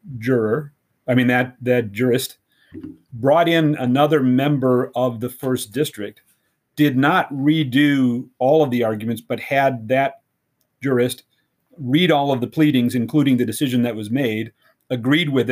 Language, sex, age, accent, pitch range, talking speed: English, male, 40-59, American, 115-135 Hz, 145 wpm